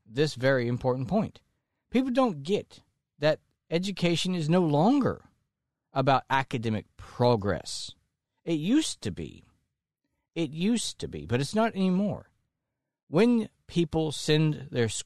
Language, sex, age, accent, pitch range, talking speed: English, male, 50-69, American, 110-160 Hz, 125 wpm